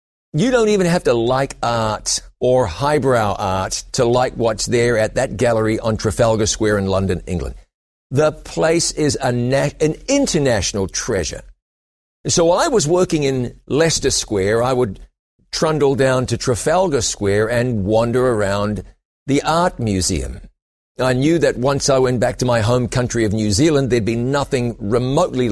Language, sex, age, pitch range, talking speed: English, male, 50-69, 110-140 Hz, 160 wpm